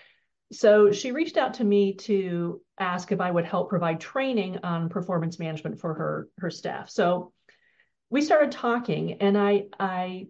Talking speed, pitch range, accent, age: 165 wpm, 195-245 Hz, American, 40-59